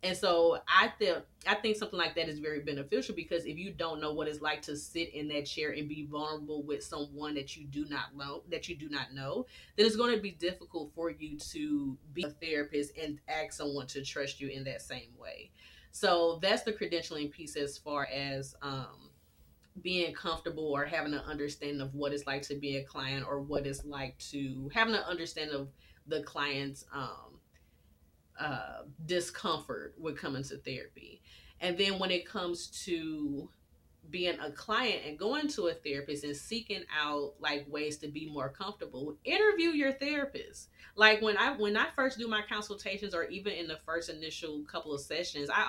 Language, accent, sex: English, American, female